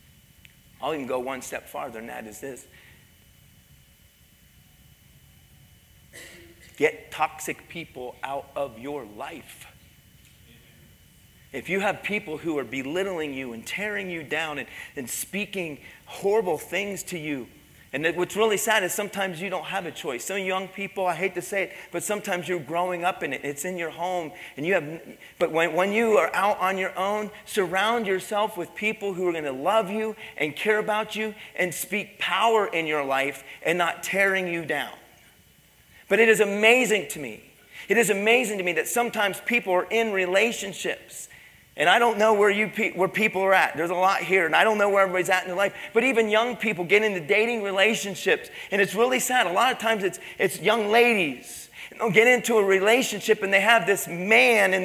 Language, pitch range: English, 170-220 Hz